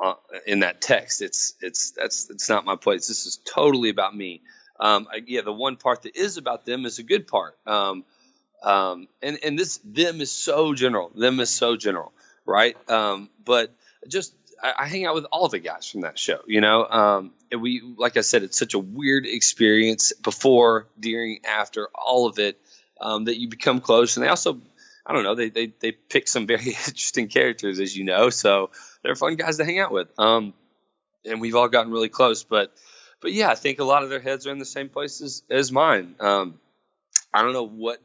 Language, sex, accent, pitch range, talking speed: English, male, American, 105-140 Hz, 215 wpm